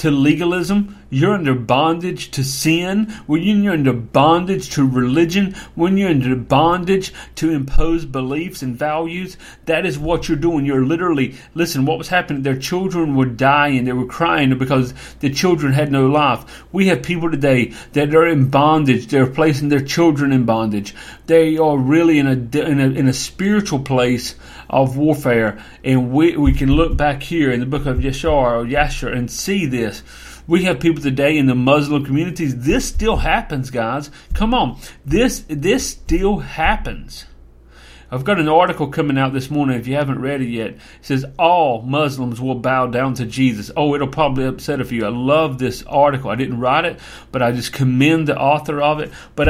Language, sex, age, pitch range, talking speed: English, male, 40-59, 130-160 Hz, 185 wpm